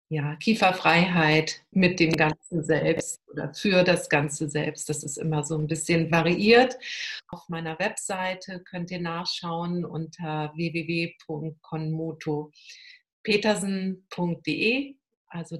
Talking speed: 105 wpm